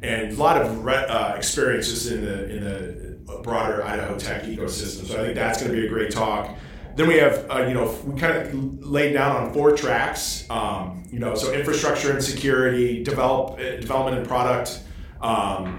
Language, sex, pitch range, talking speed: English, male, 110-130 Hz, 185 wpm